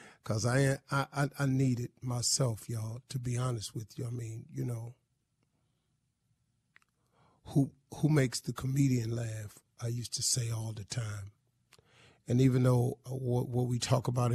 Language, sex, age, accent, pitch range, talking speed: English, male, 40-59, American, 120-135 Hz, 165 wpm